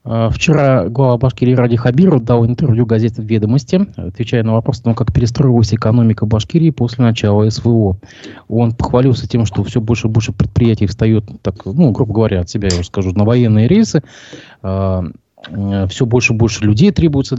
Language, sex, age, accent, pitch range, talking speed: Russian, male, 20-39, native, 105-130 Hz, 170 wpm